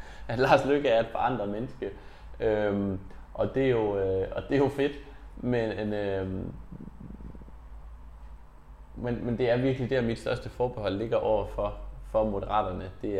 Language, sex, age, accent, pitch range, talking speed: Danish, male, 20-39, native, 90-110 Hz, 160 wpm